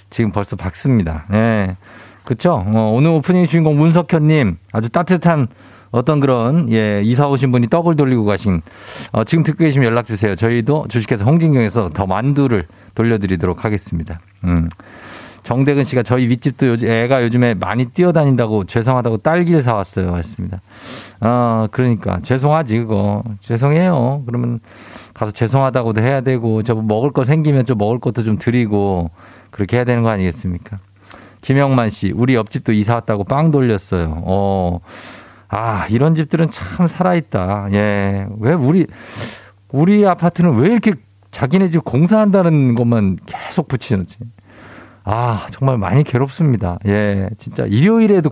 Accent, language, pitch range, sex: native, Korean, 100-140 Hz, male